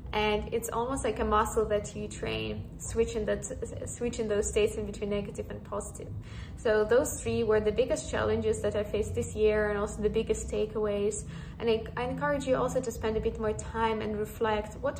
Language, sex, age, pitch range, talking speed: English, female, 10-29, 210-225 Hz, 205 wpm